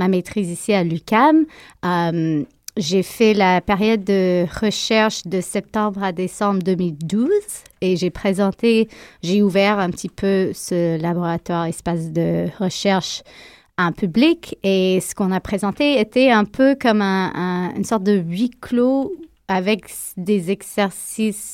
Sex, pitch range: female, 180-215 Hz